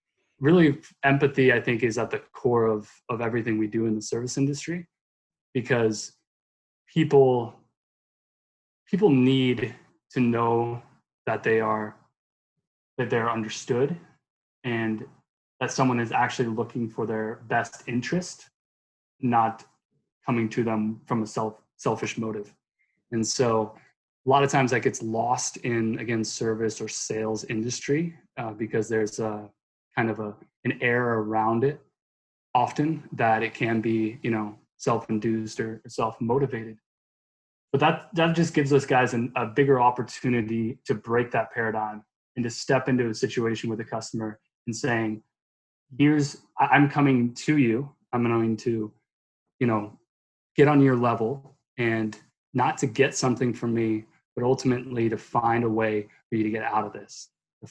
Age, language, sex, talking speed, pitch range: 20-39, English, male, 150 wpm, 110-130 Hz